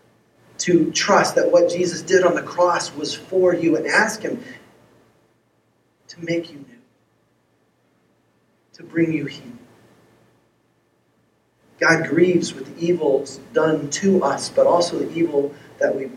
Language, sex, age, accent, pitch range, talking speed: English, male, 40-59, American, 140-195 Hz, 135 wpm